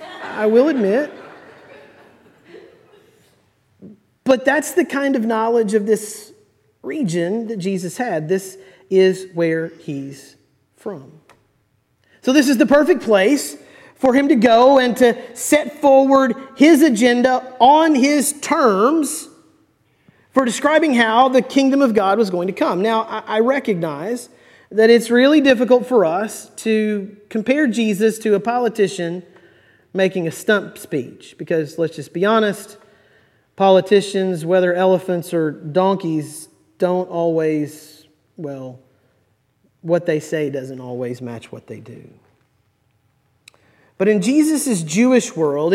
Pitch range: 165-245 Hz